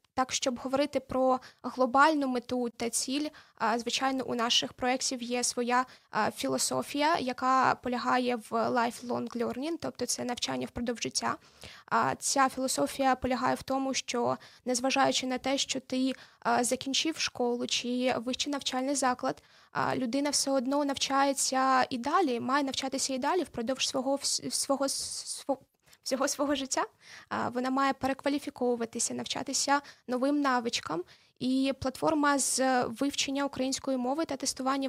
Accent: native